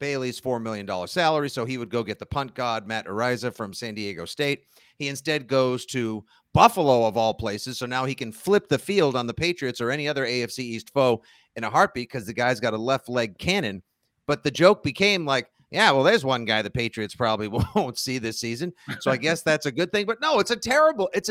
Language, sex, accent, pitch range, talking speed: English, male, American, 125-160 Hz, 235 wpm